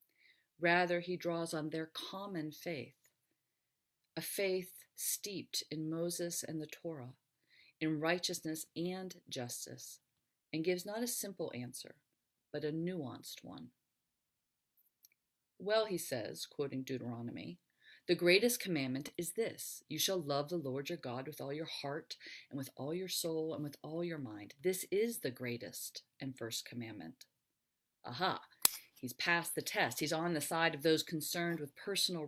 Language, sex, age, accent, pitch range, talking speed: English, female, 40-59, American, 140-175 Hz, 150 wpm